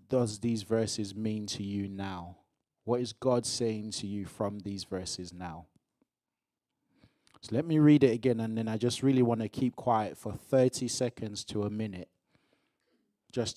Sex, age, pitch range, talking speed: male, 20-39, 100-125 Hz, 175 wpm